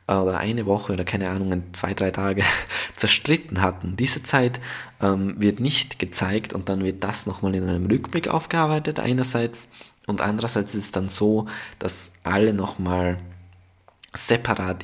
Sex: male